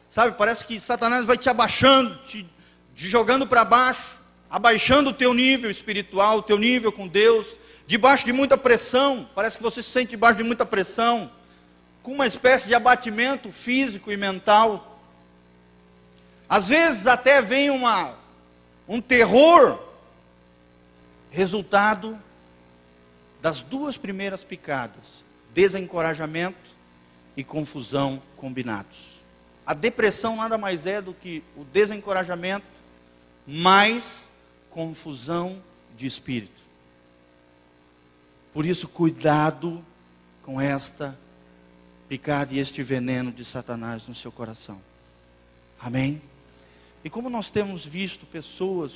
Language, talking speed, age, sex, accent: Portuguese, 115 wpm, 40-59, male, Brazilian